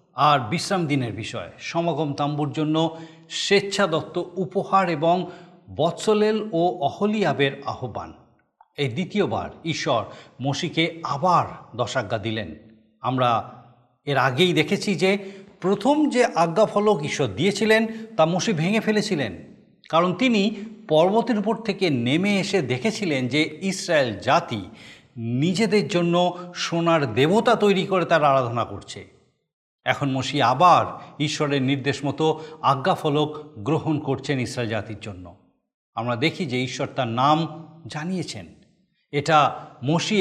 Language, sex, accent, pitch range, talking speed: Bengali, male, native, 140-200 Hz, 115 wpm